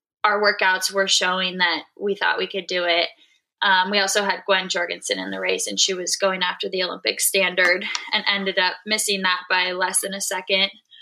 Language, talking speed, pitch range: English, 205 wpm, 180-210 Hz